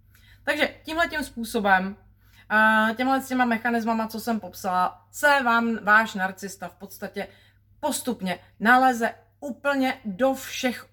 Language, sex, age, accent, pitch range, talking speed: Czech, female, 30-49, native, 190-230 Hz, 110 wpm